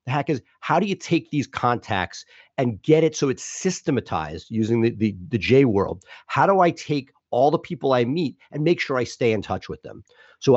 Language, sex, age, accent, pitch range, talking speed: English, male, 40-59, American, 120-155 Hz, 225 wpm